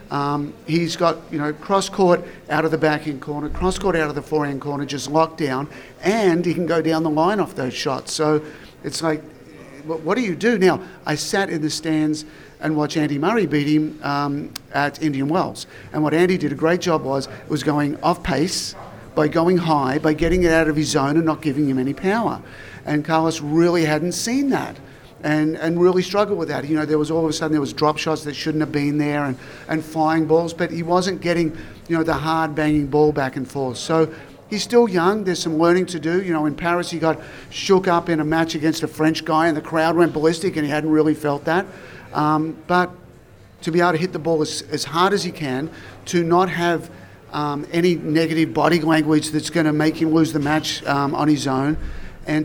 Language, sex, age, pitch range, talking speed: English, male, 50-69, 150-170 Hz, 225 wpm